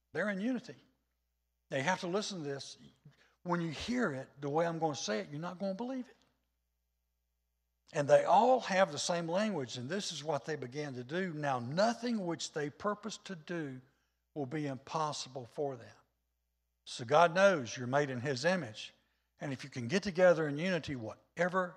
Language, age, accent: English, 60-79, American